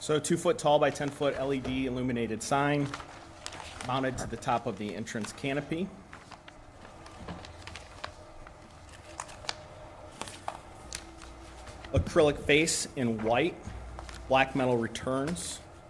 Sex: male